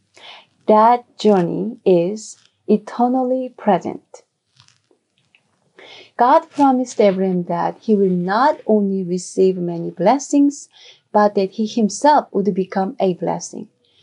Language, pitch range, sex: English, 190-255 Hz, female